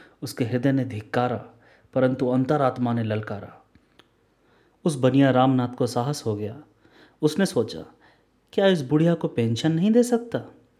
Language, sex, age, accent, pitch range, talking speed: Hindi, male, 30-49, native, 115-145 Hz, 140 wpm